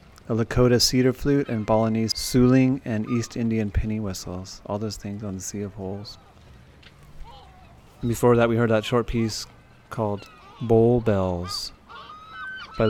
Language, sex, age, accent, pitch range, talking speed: English, male, 30-49, American, 105-120 Hz, 150 wpm